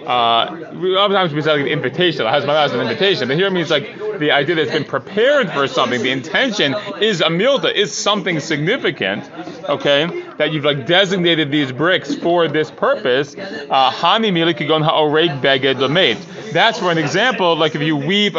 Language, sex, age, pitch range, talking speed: English, male, 30-49, 145-180 Hz, 175 wpm